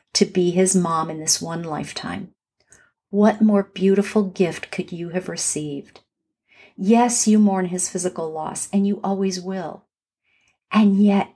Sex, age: female, 50-69